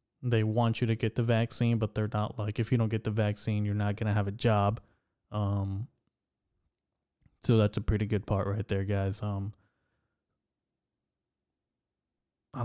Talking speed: 170 wpm